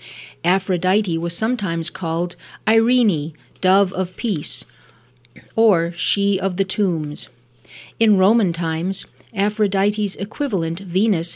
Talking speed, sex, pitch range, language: 100 wpm, female, 160-215 Hz, English